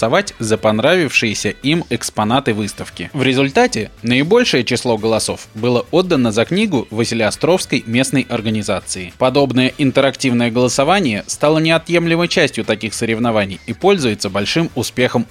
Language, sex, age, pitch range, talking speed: Russian, male, 20-39, 110-145 Hz, 120 wpm